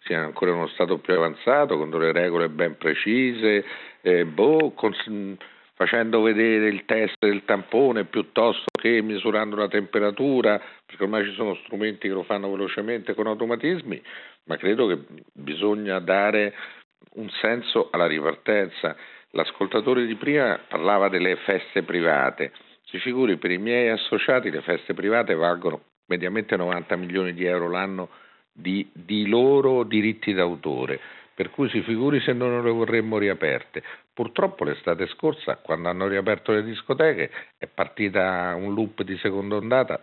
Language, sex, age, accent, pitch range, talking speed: Italian, male, 50-69, native, 95-120 Hz, 145 wpm